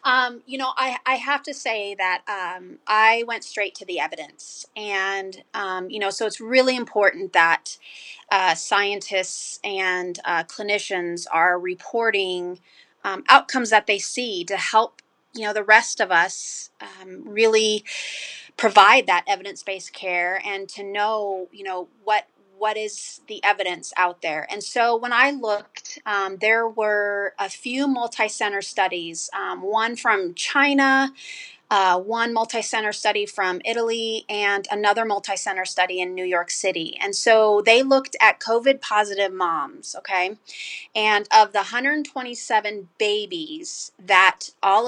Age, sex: 30-49, female